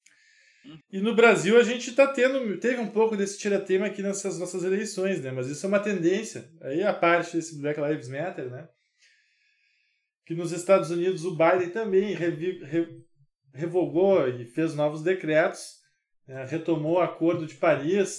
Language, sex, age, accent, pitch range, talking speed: Portuguese, male, 20-39, Brazilian, 155-205 Hz, 160 wpm